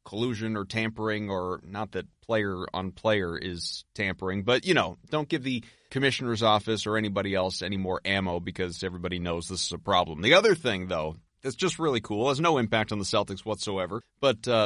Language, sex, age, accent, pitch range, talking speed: English, male, 30-49, American, 105-135 Hz, 200 wpm